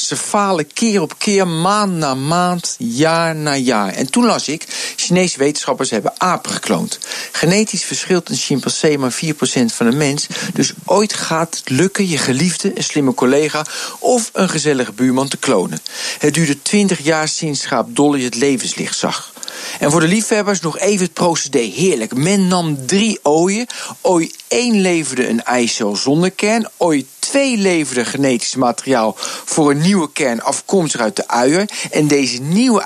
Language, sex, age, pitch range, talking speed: Dutch, male, 50-69, 140-195 Hz, 165 wpm